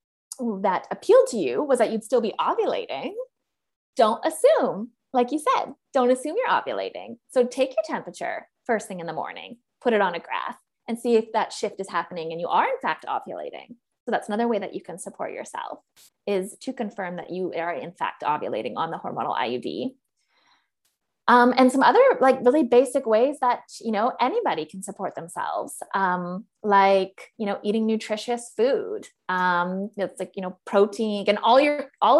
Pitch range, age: 195-250 Hz, 20-39